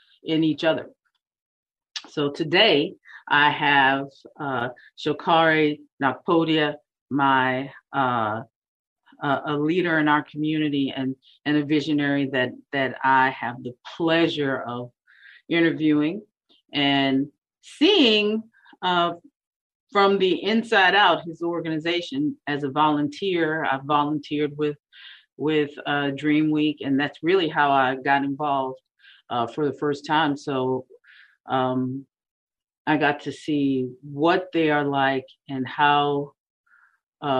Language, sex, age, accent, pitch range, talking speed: English, female, 40-59, American, 130-155 Hz, 120 wpm